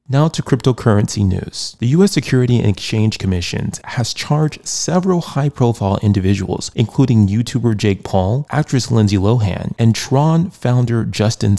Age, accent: 30-49, American